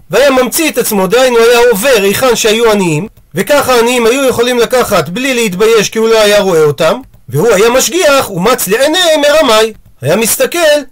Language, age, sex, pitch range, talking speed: Hebrew, 40-59, male, 185-275 Hz, 170 wpm